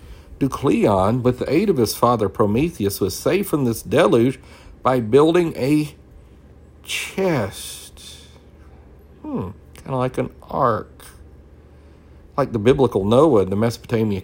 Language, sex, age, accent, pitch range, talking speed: English, male, 50-69, American, 80-115 Hz, 120 wpm